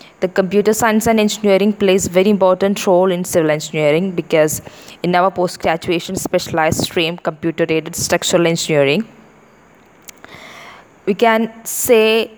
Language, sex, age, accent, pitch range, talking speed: English, female, 20-39, Indian, 160-195 Hz, 115 wpm